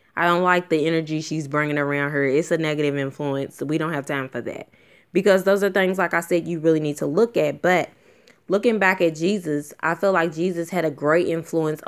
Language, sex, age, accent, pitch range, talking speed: English, female, 20-39, American, 150-180 Hz, 225 wpm